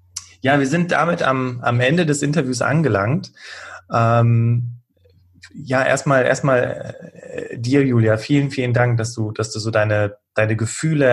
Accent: German